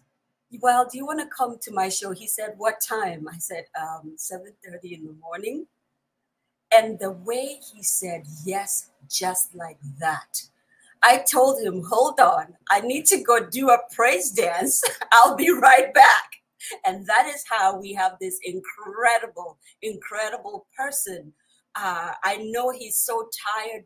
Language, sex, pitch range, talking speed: English, female, 180-240 Hz, 155 wpm